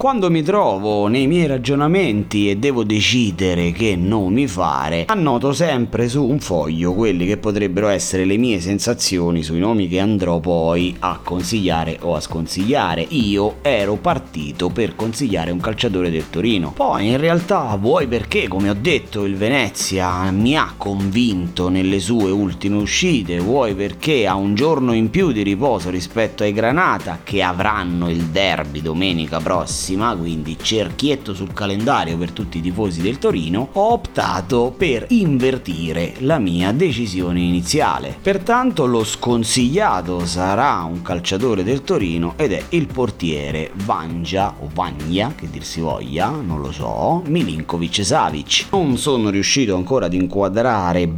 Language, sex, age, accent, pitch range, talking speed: Italian, male, 30-49, native, 85-115 Hz, 150 wpm